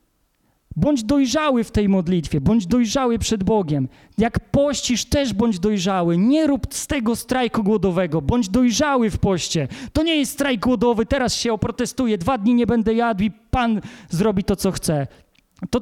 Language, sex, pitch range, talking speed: Polish, male, 215-260 Hz, 165 wpm